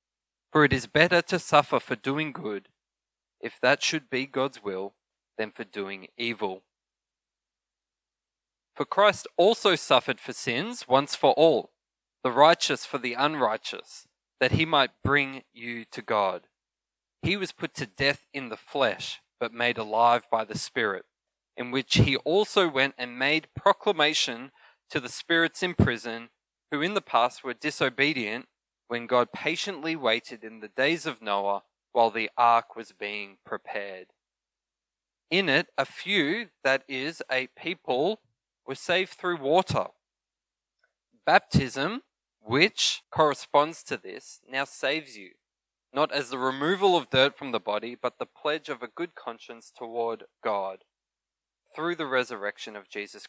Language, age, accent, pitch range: English, 20-39, Australian, 115-150 Hz